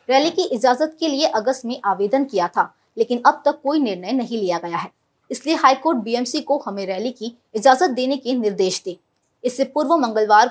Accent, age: native, 20-39